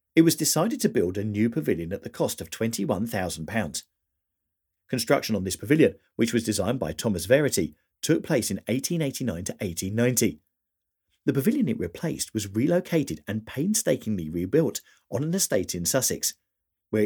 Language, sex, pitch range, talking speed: English, male, 95-125 Hz, 150 wpm